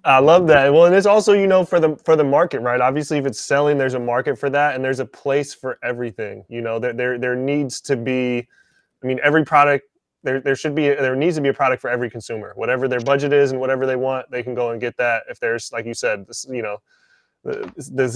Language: English